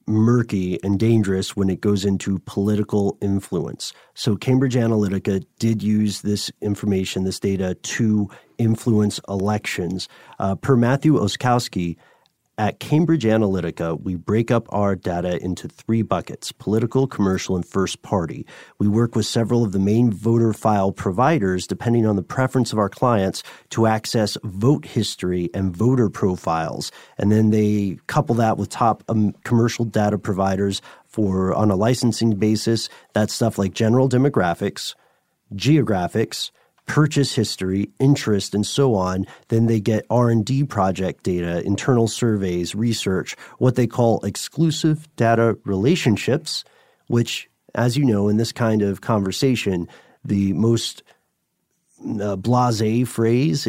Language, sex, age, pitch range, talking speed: English, male, 40-59, 95-115 Hz, 135 wpm